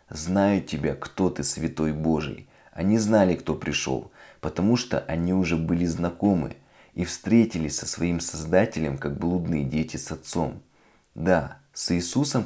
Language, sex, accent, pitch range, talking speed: Russian, male, native, 80-90 Hz, 140 wpm